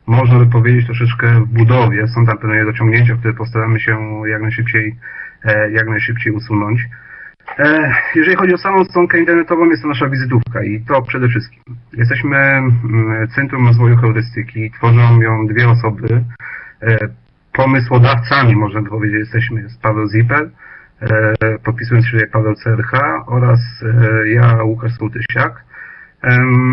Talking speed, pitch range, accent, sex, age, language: 130 wpm, 110-130 Hz, native, male, 40-59, Polish